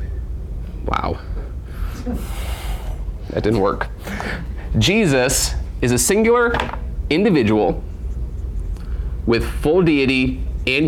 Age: 30-49